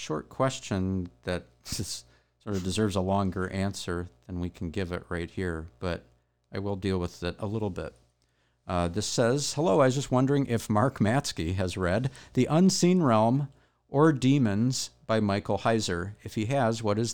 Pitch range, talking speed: 80-115 Hz, 180 wpm